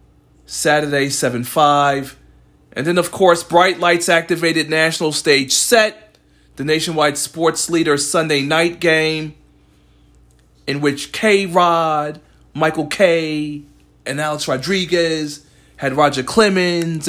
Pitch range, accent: 125-165 Hz, American